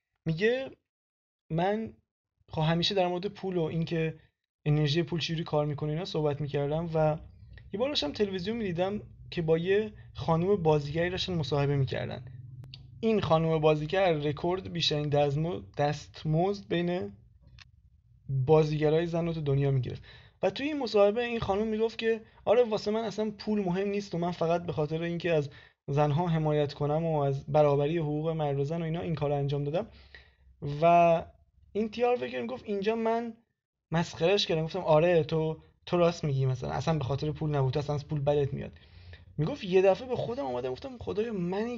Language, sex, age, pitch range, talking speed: Persian, male, 20-39, 145-190 Hz, 165 wpm